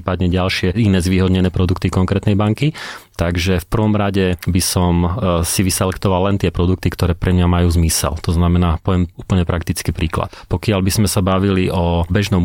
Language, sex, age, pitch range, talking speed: Slovak, male, 30-49, 85-100 Hz, 170 wpm